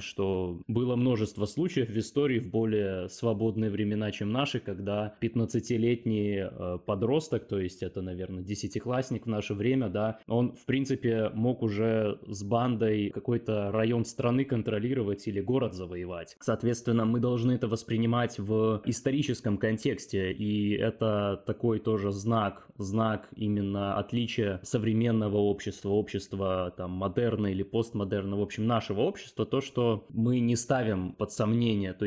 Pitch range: 105-120 Hz